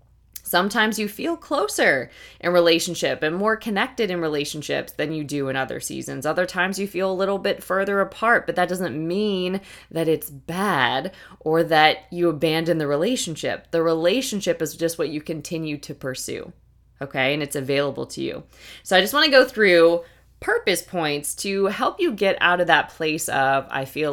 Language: English